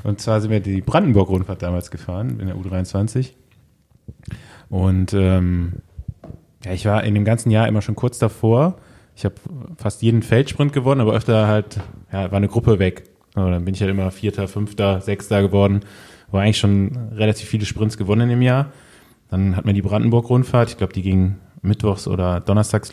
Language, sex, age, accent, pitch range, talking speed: German, male, 20-39, German, 95-115 Hz, 180 wpm